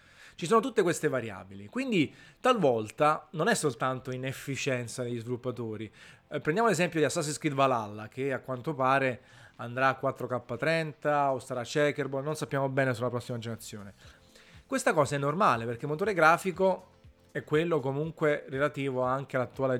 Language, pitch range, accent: Italian, 125-160 Hz, native